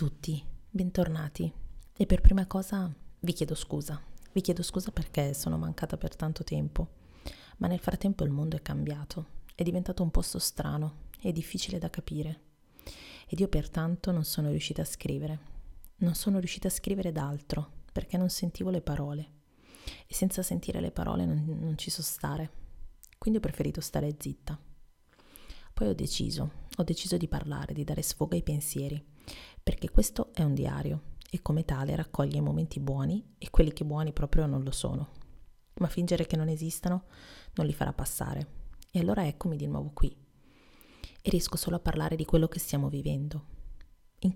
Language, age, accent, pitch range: Italian, 30-49, native, 140-175 Hz